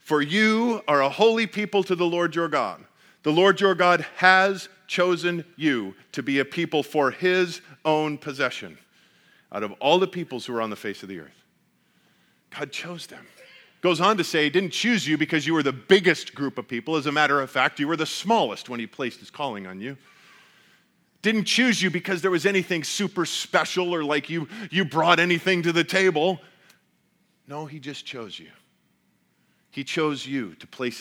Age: 40-59